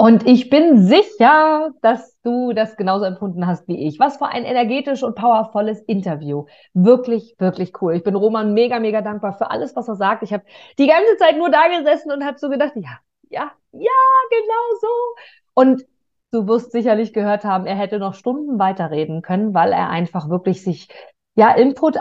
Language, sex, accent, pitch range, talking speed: German, female, German, 195-250 Hz, 185 wpm